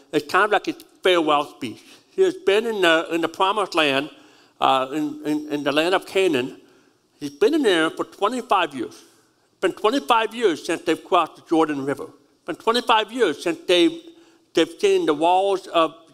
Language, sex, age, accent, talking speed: English, male, 60-79, American, 195 wpm